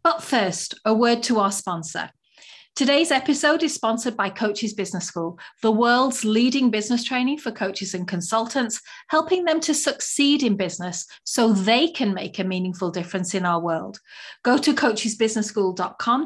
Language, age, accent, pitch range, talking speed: English, 40-59, British, 195-275 Hz, 160 wpm